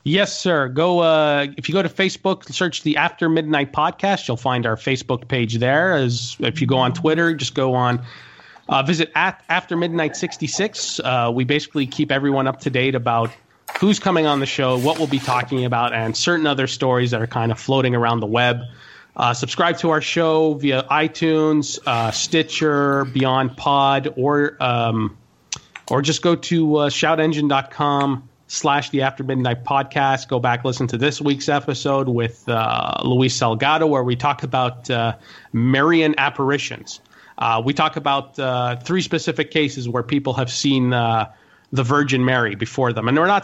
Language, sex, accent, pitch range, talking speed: English, male, American, 125-155 Hz, 180 wpm